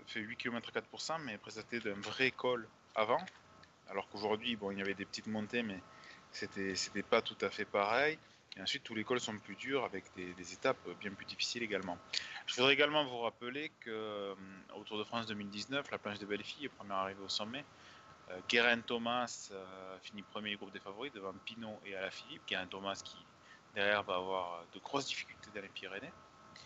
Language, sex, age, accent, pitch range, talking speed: French, male, 20-39, French, 100-120 Hz, 200 wpm